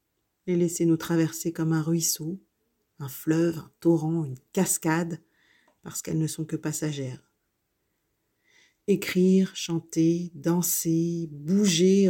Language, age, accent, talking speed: French, 50-69, French, 115 wpm